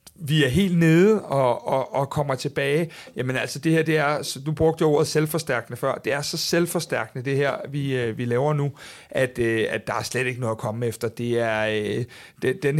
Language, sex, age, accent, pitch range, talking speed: Danish, male, 60-79, native, 135-155 Hz, 200 wpm